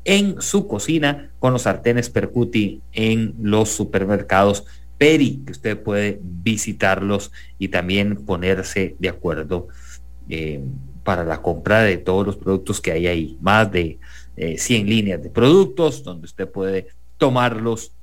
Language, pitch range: English, 85-125 Hz